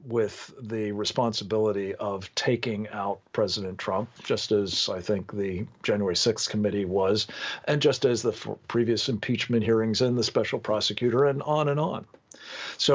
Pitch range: 110-140 Hz